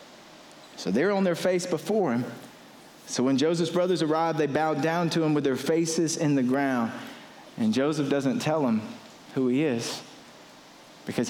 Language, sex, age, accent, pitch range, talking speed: English, male, 40-59, American, 120-160 Hz, 170 wpm